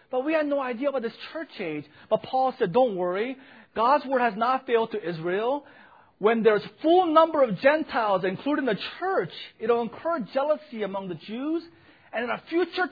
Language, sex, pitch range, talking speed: English, male, 190-285 Hz, 195 wpm